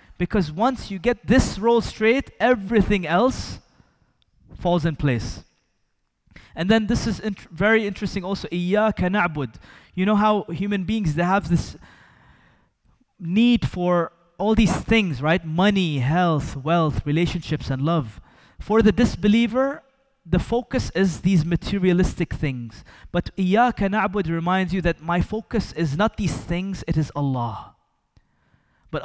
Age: 20-39